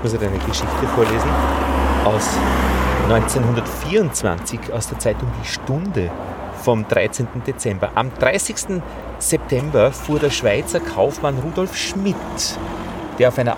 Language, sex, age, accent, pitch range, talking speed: German, male, 40-59, Austrian, 100-145 Hz, 120 wpm